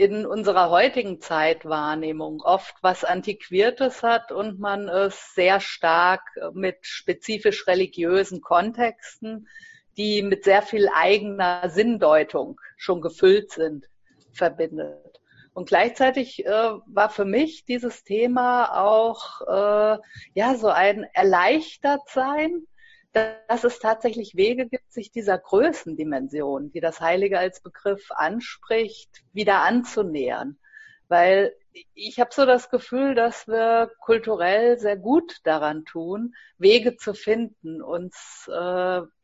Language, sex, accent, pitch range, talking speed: English, female, German, 185-235 Hz, 115 wpm